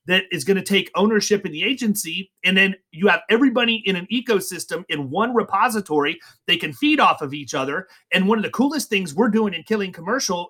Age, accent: 30-49, American